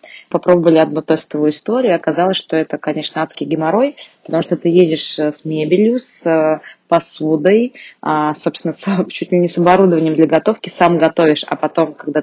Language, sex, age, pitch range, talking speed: Russian, female, 20-39, 155-180 Hz, 150 wpm